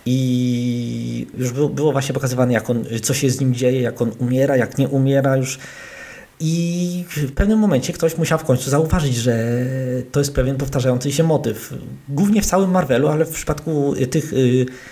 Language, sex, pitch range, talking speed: Polish, male, 125-145 Hz, 175 wpm